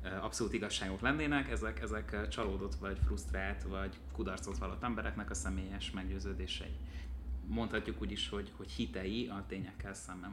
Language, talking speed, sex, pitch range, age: Hungarian, 140 wpm, male, 90-100 Hz, 30-49